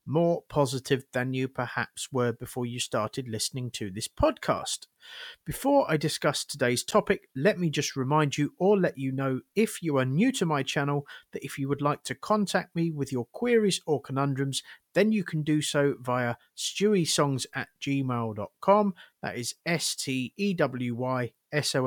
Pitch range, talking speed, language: 130-175 Hz, 165 wpm, English